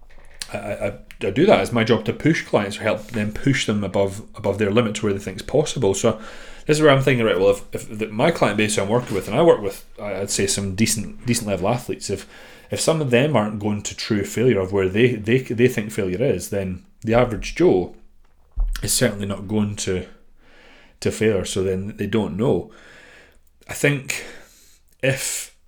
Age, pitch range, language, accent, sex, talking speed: 30-49, 95-115 Hz, English, British, male, 210 wpm